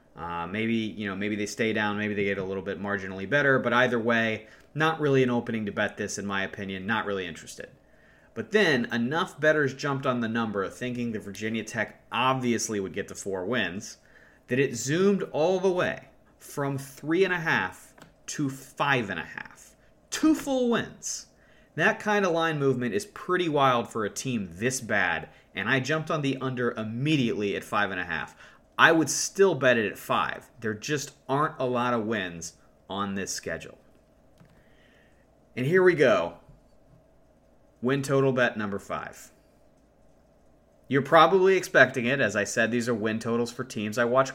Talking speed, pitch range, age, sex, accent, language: 185 wpm, 110-140 Hz, 30-49, male, American, English